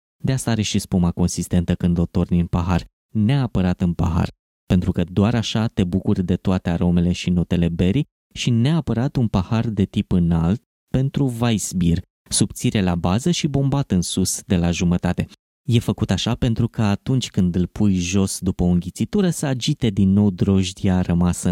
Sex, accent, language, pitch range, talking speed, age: male, native, Romanian, 90-115 Hz, 180 wpm, 20-39